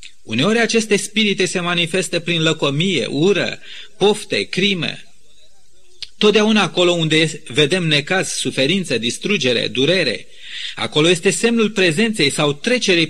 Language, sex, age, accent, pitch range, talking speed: Romanian, male, 30-49, native, 150-205 Hz, 110 wpm